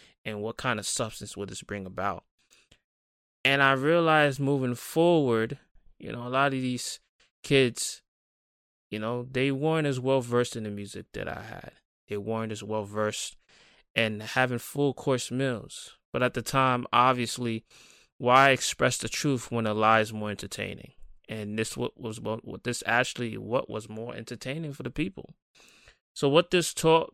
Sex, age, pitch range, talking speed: male, 20-39, 105-125 Hz, 160 wpm